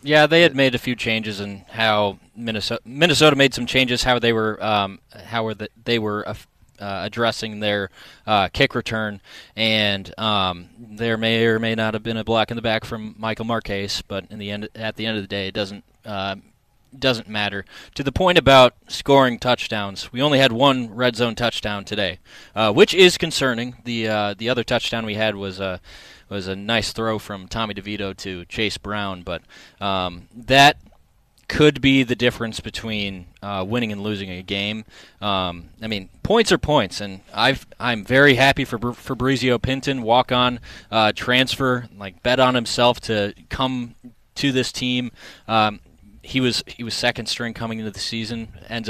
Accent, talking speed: American, 190 wpm